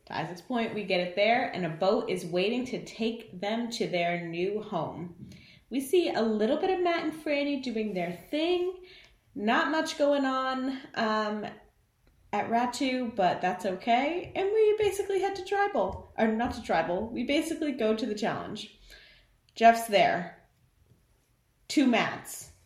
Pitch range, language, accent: 175-245 Hz, English, American